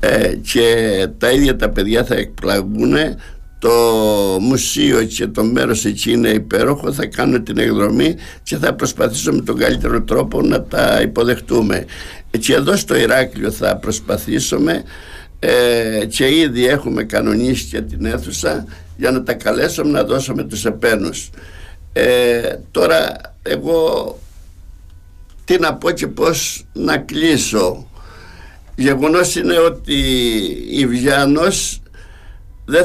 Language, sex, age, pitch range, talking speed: Greek, male, 60-79, 105-140 Hz, 120 wpm